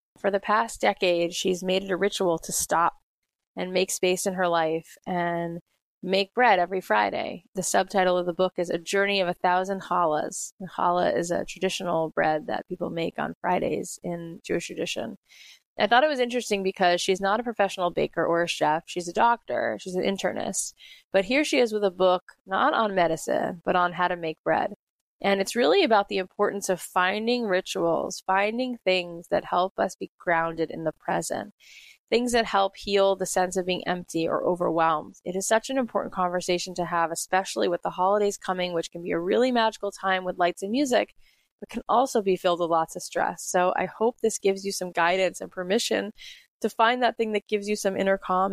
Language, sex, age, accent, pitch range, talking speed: English, female, 20-39, American, 175-205 Hz, 205 wpm